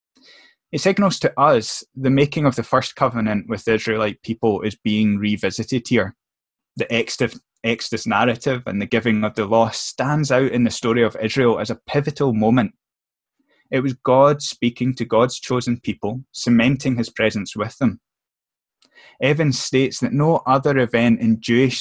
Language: English